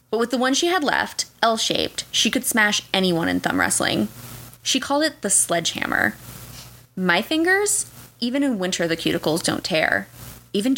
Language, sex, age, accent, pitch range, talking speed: English, female, 20-39, American, 170-260 Hz, 165 wpm